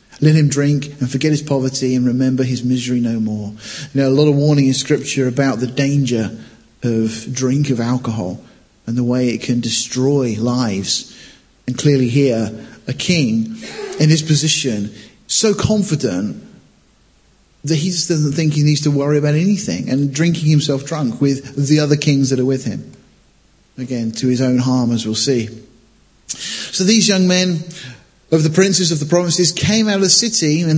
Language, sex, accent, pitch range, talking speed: English, male, British, 125-185 Hz, 175 wpm